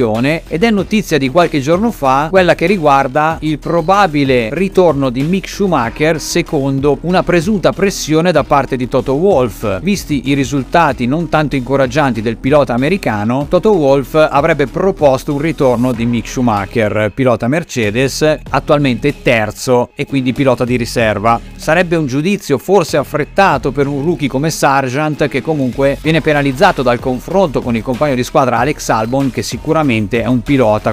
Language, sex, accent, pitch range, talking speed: Italian, male, native, 120-155 Hz, 155 wpm